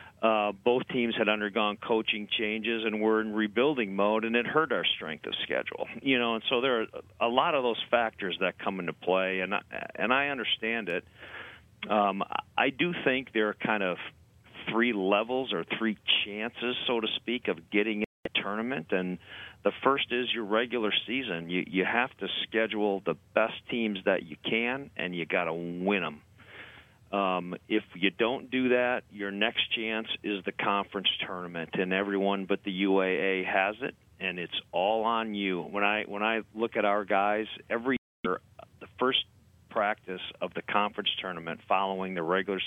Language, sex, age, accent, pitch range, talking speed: English, male, 40-59, American, 95-115 Hz, 185 wpm